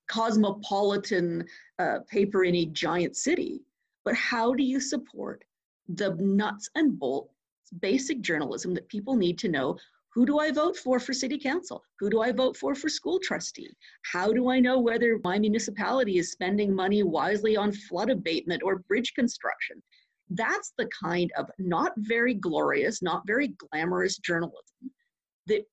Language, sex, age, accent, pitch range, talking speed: English, female, 40-59, American, 185-255 Hz, 160 wpm